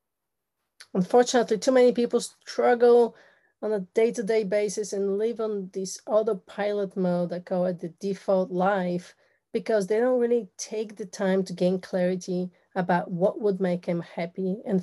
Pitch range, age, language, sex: 180-215 Hz, 30-49, English, female